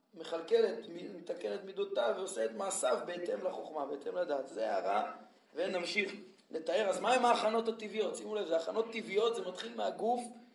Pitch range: 195-250 Hz